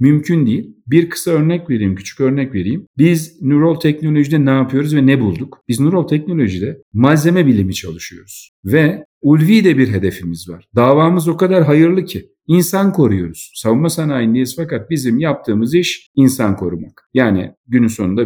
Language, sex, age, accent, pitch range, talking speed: Turkish, male, 50-69, native, 110-155 Hz, 150 wpm